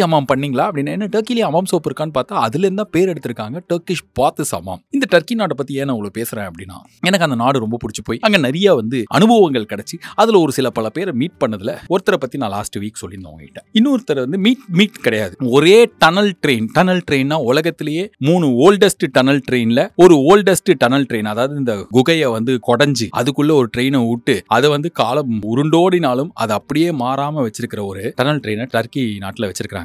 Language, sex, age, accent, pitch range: Tamil, male, 30-49, native, 110-160 Hz